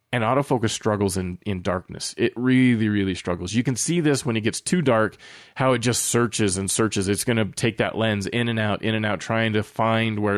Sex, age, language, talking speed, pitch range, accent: male, 20-39, English, 235 wpm, 100-120 Hz, American